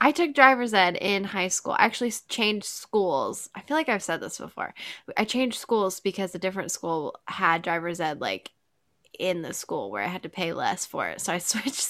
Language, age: English, 10-29